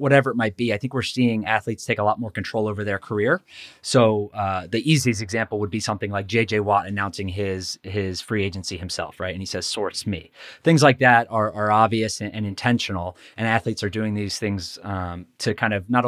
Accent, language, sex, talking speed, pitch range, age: American, English, male, 225 wpm, 100-120 Hz, 30-49